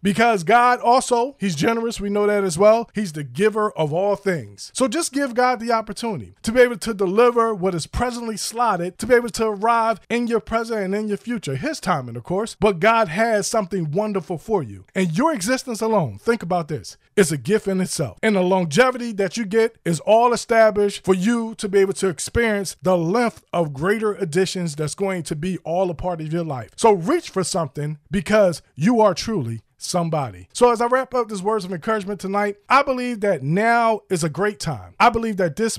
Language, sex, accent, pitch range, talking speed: English, male, American, 185-225 Hz, 215 wpm